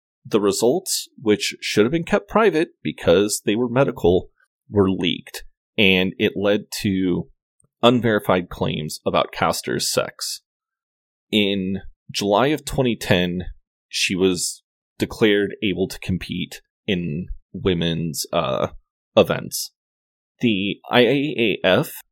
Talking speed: 105 wpm